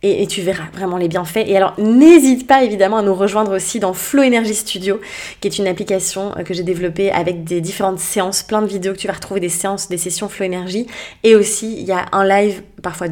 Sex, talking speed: female, 235 wpm